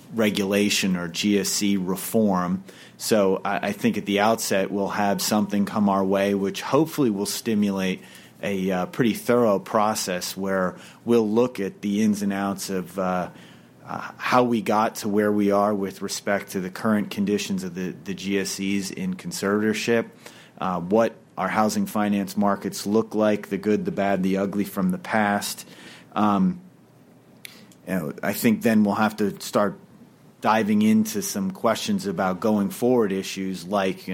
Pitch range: 95-110 Hz